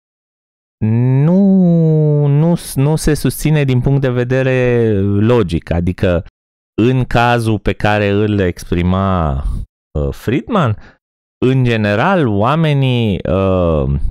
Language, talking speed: Romanian, 95 wpm